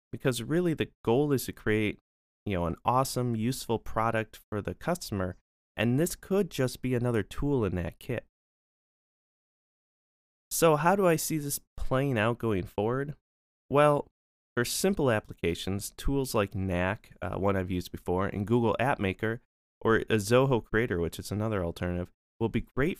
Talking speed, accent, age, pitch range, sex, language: 165 wpm, American, 30-49, 90-130 Hz, male, English